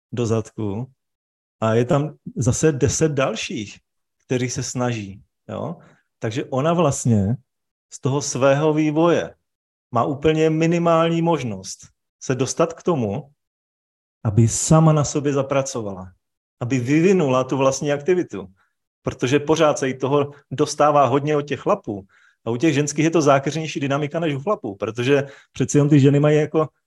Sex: male